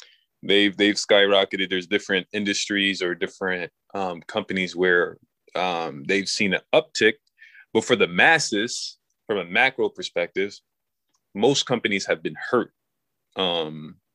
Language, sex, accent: English, male, American